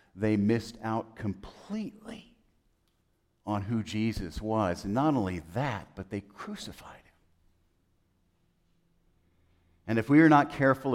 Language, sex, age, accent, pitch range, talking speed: English, male, 50-69, American, 90-130 Hz, 120 wpm